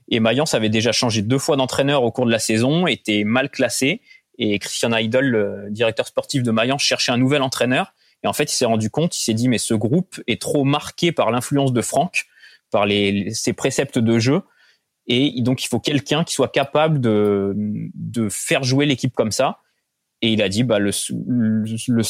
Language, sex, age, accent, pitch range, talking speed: French, male, 20-39, French, 110-135 Hz, 205 wpm